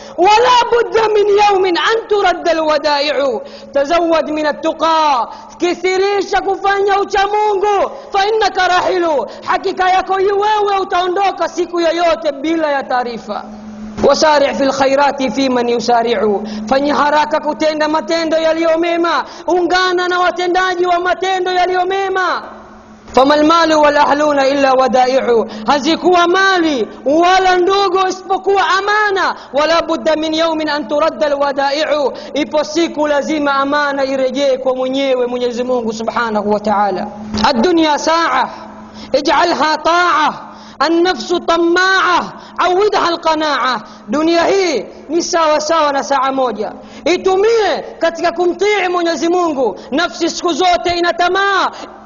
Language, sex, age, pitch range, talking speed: Swahili, female, 40-59, 280-365 Hz, 85 wpm